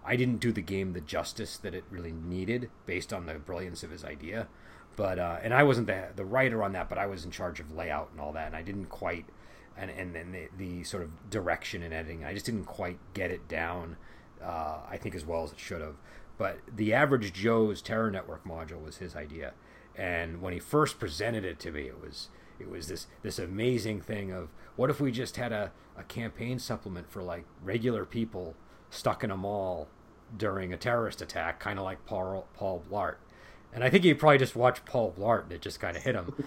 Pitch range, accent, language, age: 90-120 Hz, American, English, 40-59